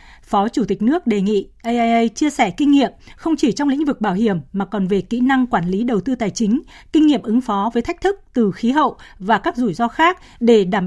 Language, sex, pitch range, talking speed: Vietnamese, female, 205-260 Hz, 255 wpm